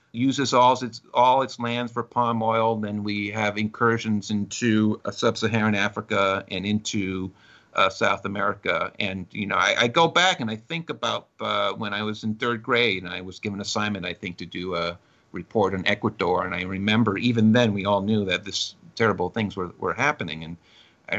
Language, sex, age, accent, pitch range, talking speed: English, male, 50-69, American, 100-125 Hz, 200 wpm